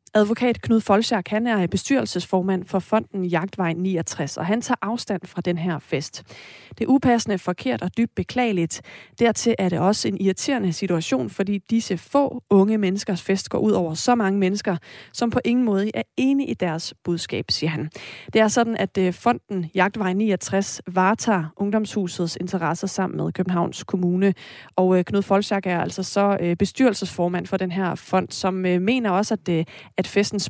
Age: 30-49